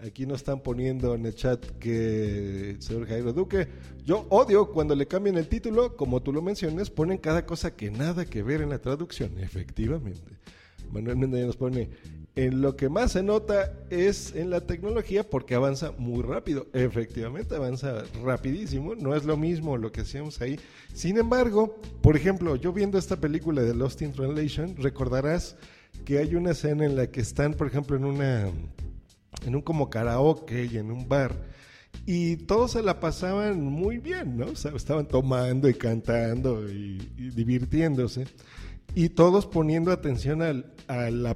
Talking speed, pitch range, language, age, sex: 175 wpm, 115-160 Hz, Spanish, 40-59, male